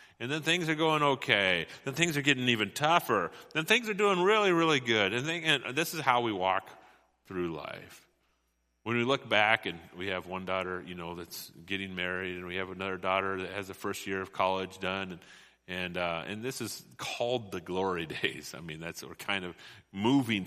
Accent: American